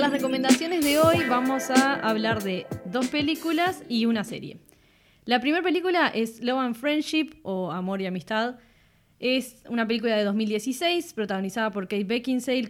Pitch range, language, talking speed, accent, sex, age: 190-255 Hz, Spanish, 155 wpm, Argentinian, female, 10-29